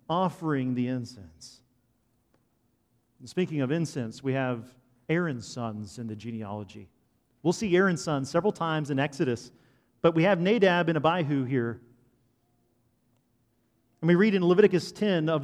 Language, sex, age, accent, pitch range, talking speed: English, male, 40-59, American, 120-165 Hz, 140 wpm